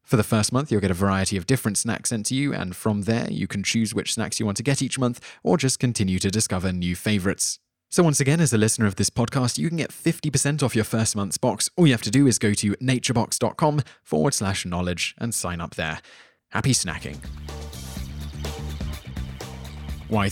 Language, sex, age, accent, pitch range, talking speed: English, male, 20-39, British, 95-125 Hz, 215 wpm